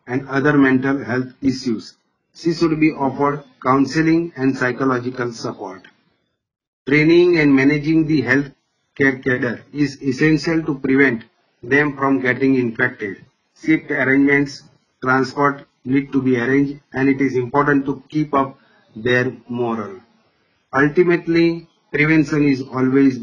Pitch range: 130-145 Hz